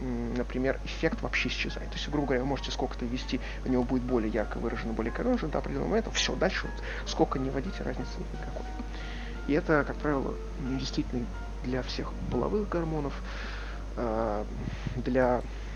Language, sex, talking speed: Russian, male, 155 wpm